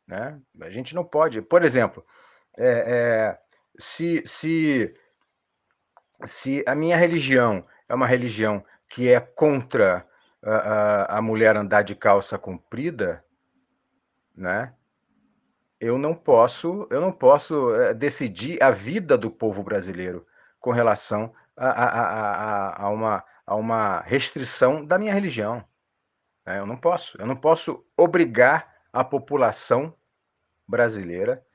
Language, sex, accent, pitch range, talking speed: Portuguese, male, Brazilian, 105-170 Hz, 125 wpm